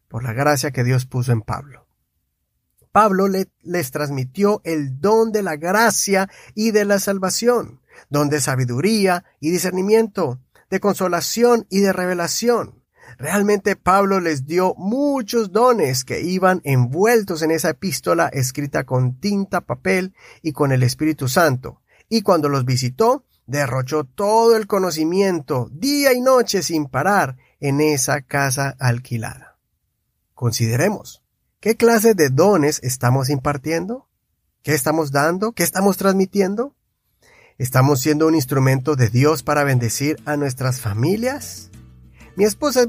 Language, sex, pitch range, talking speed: Spanish, male, 130-195 Hz, 135 wpm